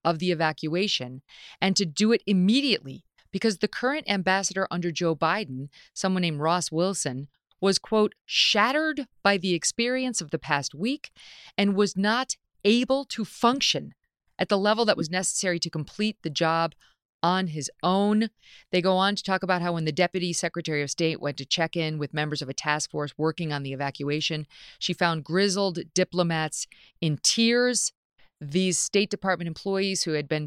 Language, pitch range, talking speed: English, 155-195 Hz, 175 wpm